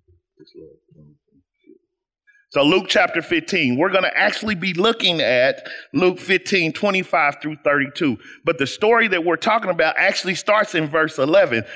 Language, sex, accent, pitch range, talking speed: English, male, American, 140-210 Hz, 145 wpm